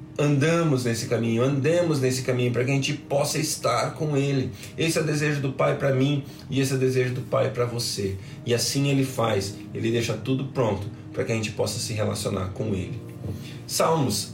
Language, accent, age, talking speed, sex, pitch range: Portuguese, Brazilian, 20-39, 205 wpm, male, 125-155 Hz